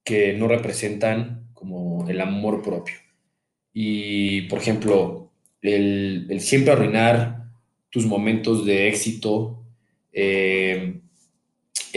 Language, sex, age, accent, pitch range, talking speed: Spanish, male, 20-39, Mexican, 100-115 Hz, 95 wpm